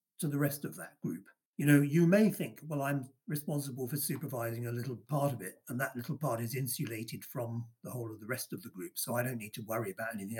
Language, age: English, 50-69